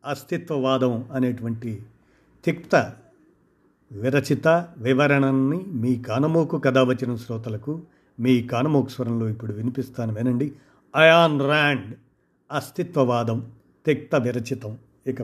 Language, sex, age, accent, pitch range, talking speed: Telugu, male, 50-69, native, 125-150 Hz, 85 wpm